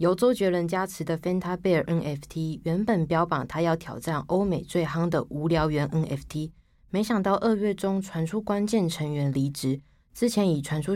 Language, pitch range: Chinese, 160-210 Hz